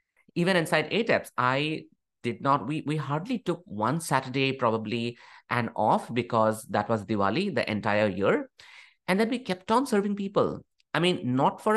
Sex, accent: male, Indian